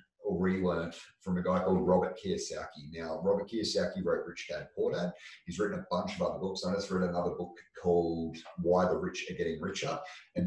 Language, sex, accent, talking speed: English, male, Australian, 205 wpm